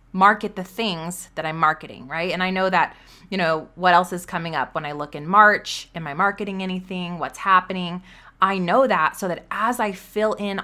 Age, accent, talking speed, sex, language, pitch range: 20-39, American, 215 wpm, female, English, 170-210 Hz